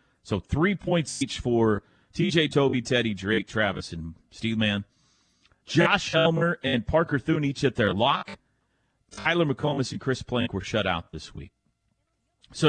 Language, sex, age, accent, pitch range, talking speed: English, male, 40-59, American, 120-170 Hz, 155 wpm